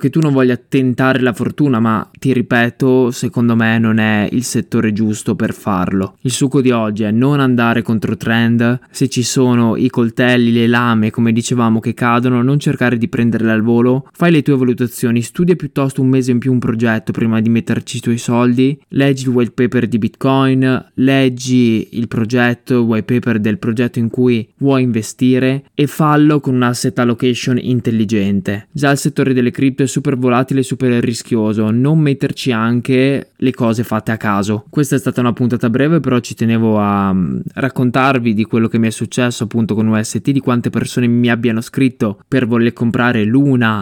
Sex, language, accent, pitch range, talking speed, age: male, Italian, native, 115-130 Hz, 185 wpm, 20-39